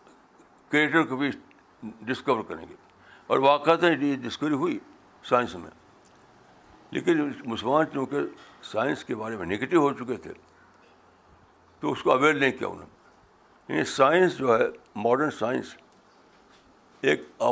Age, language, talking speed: 60-79, Urdu, 125 wpm